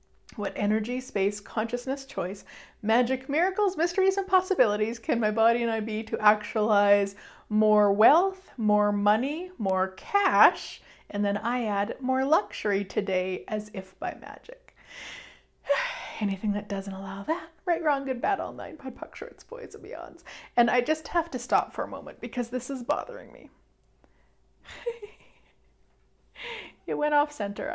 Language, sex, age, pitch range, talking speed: English, female, 30-49, 205-285 Hz, 150 wpm